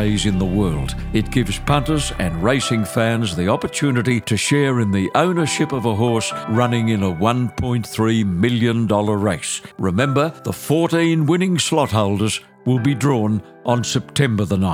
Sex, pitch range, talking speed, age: male, 105-135 Hz, 150 wpm, 60-79